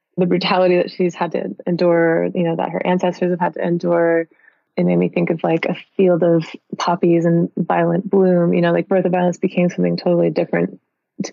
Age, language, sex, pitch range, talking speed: 20-39, English, female, 165-185 Hz, 210 wpm